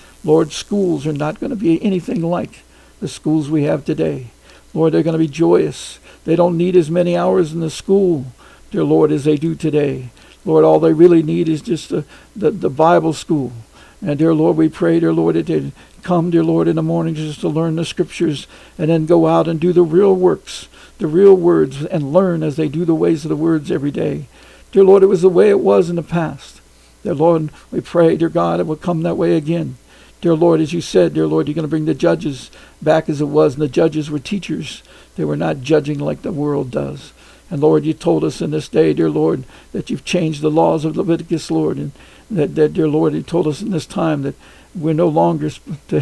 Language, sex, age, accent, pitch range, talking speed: English, male, 60-79, American, 150-170 Hz, 230 wpm